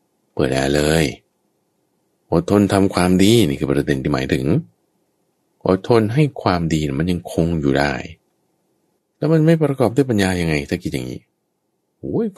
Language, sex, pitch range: Thai, male, 70-90 Hz